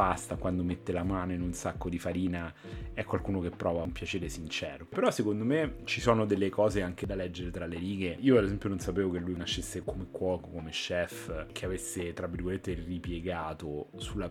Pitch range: 85-100 Hz